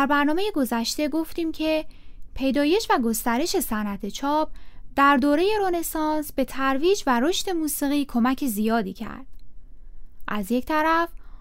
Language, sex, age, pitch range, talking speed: Persian, female, 10-29, 225-325 Hz, 125 wpm